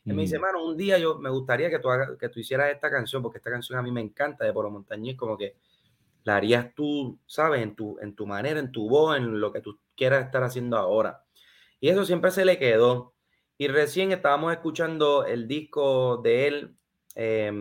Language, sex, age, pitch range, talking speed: Spanish, male, 30-49, 120-185 Hz, 220 wpm